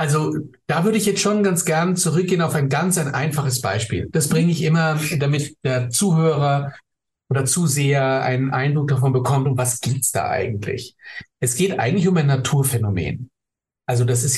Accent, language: German, German